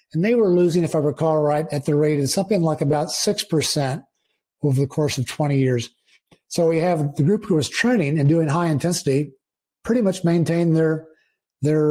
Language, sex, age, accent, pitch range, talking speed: English, male, 50-69, American, 145-165 Hz, 195 wpm